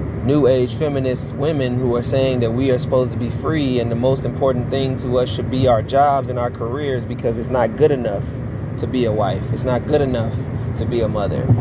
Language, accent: English, American